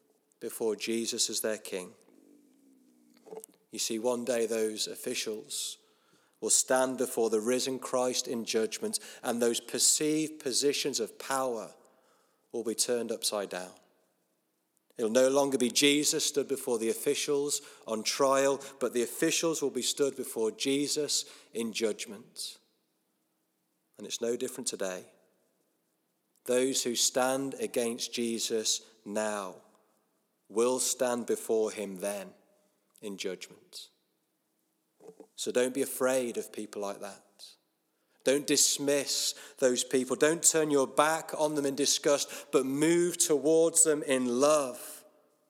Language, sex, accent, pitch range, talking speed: English, male, British, 115-145 Hz, 125 wpm